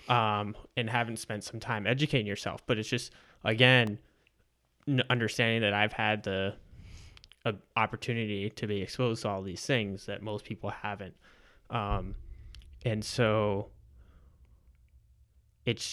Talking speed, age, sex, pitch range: 130 wpm, 20-39, male, 100-115 Hz